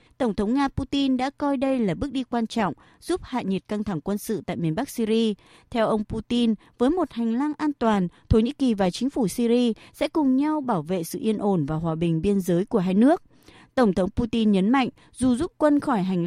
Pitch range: 190-260 Hz